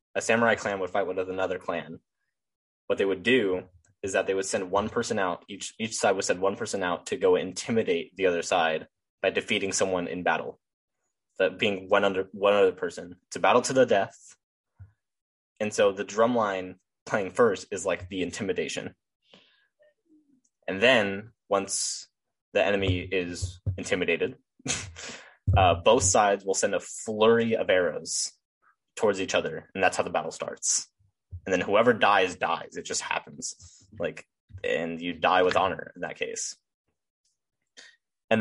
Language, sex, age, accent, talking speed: English, male, 10-29, American, 160 wpm